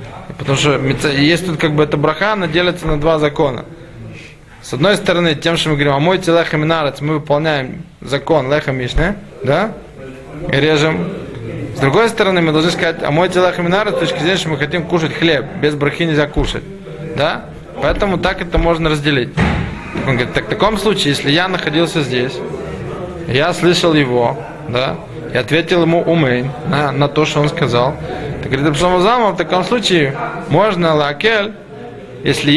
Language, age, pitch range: Russian, 20-39, 145-175 Hz